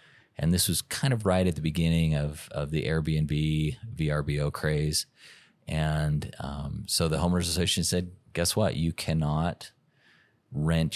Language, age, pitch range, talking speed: English, 30-49, 75-90 Hz, 150 wpm